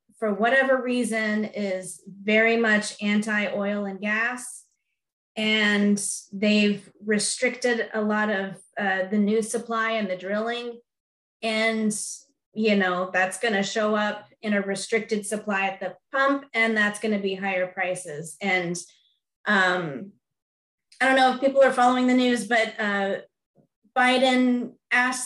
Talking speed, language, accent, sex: 135 wpm, English, American, female